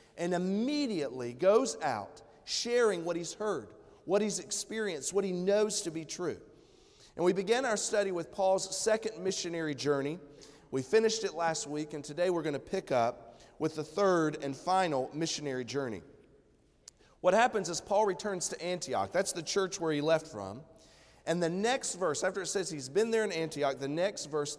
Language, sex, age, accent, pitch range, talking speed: English, male, 40-59, American, 145-195 Hz, 185 wpm